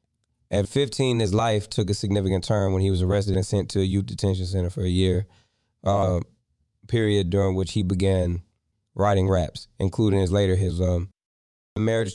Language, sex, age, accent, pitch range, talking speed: English, male, 20-39, American, 95-110 Hz, 185 wpm